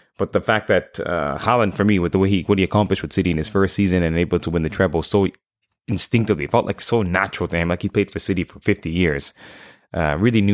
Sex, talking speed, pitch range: male, 255 wpm, 85-100 Hz